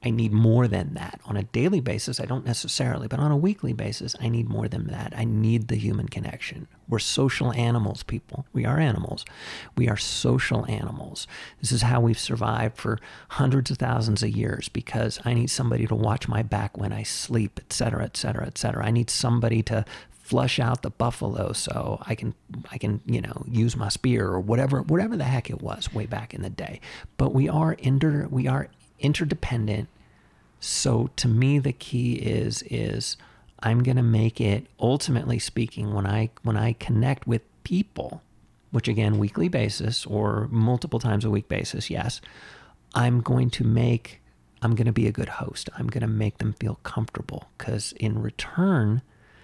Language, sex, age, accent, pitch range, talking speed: English, male, 40-59, American, 110-125 Hz, 190 wpm